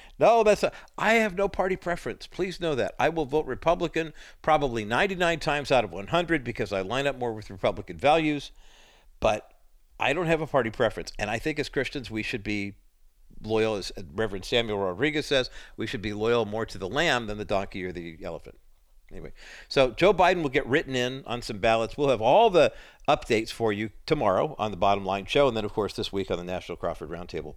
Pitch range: 105-145 Hz